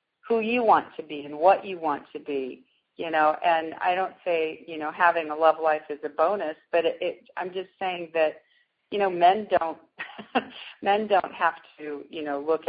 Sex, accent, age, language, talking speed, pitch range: female, American, 40-59, English, 210 wpm, 145-165 Hz